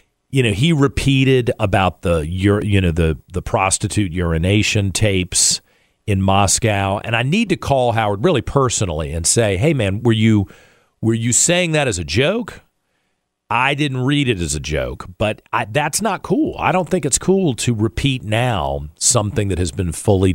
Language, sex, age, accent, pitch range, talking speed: English, male, 40-59, American, 95-135 Hz, 175 wpm